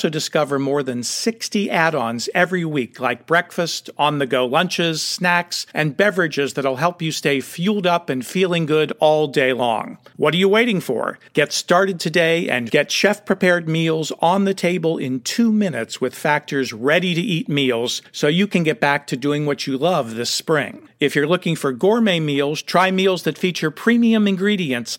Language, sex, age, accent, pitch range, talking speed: English, male, 50-69, American, 140-185 Hz, 175 wpm